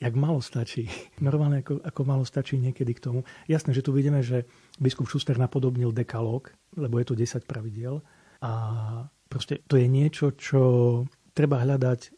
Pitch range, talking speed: 120-145 Hz, 165 wpm